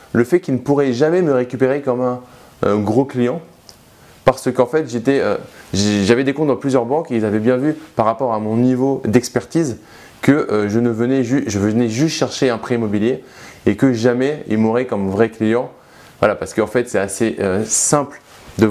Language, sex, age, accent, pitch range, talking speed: French, male, 20-39, French, 100-130 Hz, 195 wpm